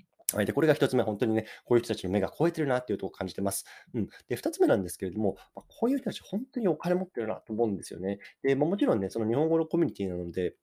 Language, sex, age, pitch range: Japanese, male, 20-39, 95-150 Hz